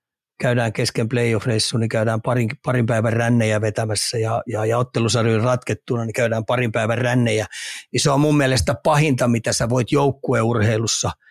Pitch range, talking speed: 115-135 Hz, 165 wpm